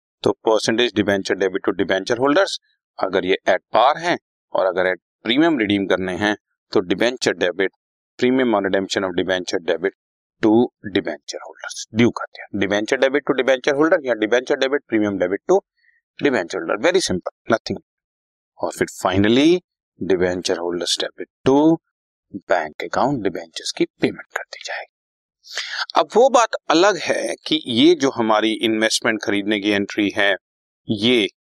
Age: 30-49